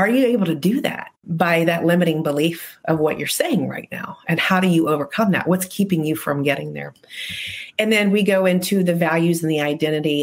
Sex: female